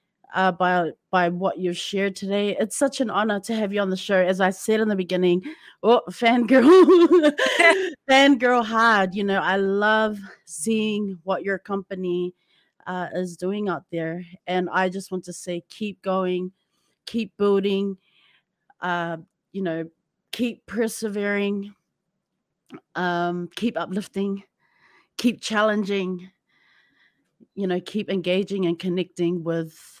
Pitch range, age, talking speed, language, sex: 180-205 Hz, 30-49, 135 wpm, English, female